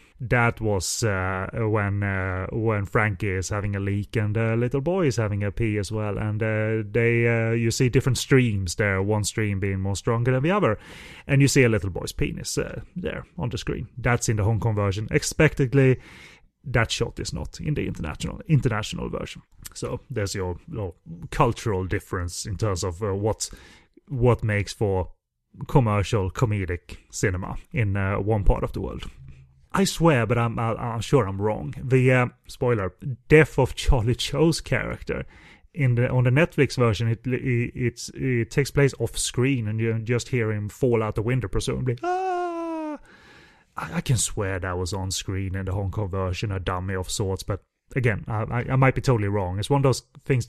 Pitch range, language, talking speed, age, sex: 100-130 Hz, English, 190 wpm, 30-49, male